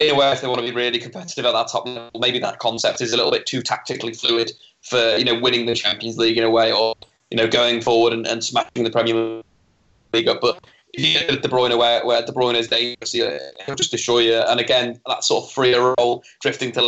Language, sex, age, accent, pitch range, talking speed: English, male, 20-39, British, 115-130 Hz, 260 wpm